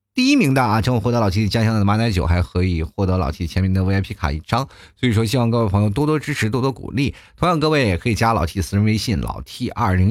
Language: Chinese